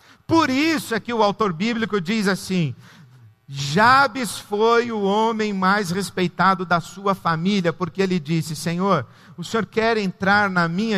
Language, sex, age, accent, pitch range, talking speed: Portuguese, male, 50-69, Brazilian, 170-255 Hz, 155 wpm